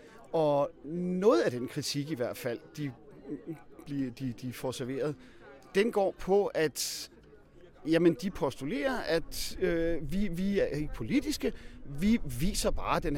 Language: Danish